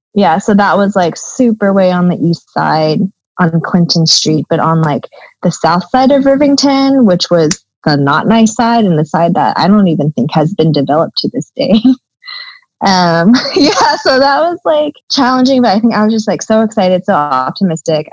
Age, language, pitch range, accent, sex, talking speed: 20-39, English, 170-235 Hz, American, female, 200 wpm